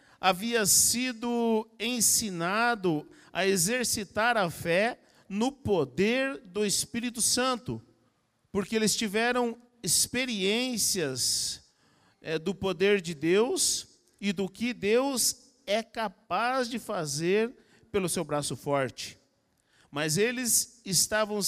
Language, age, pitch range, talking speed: Portuguese, 50-69, 160-235 Hz, 100 wpm